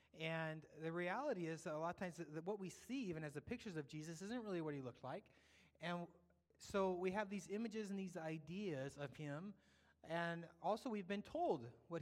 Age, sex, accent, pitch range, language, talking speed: 30-49, male, American, 150-195 Hz, English, 210 wpm